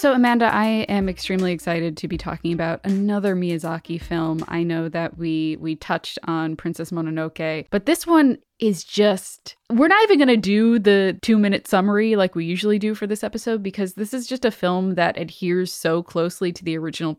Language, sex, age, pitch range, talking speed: English, female, 10-29, 170-215 Hz, 195 wpm